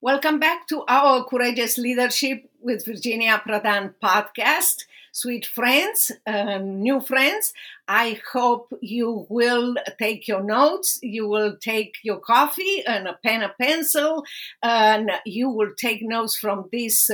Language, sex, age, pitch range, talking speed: English, female, 50-69, 205-245 Hz, 135 wpm